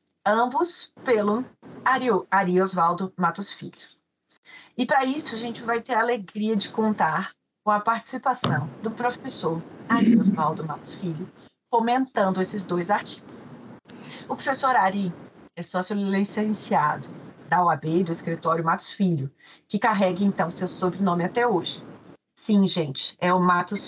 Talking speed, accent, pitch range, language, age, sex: 135 wpm, Brazilian, 175-220 Hz, Portuguese, 40-59, female